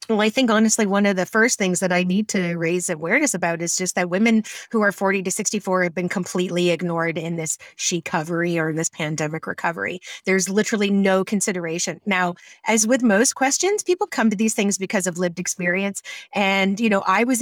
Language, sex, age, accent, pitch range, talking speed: English, female, 30-49, American, 180-215 Hz, 210 wpm